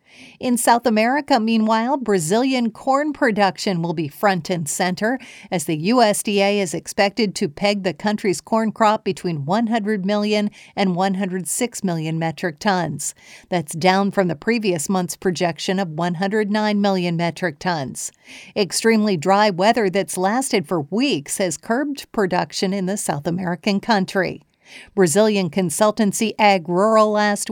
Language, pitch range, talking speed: English, 185-225 Hz, 135 wpm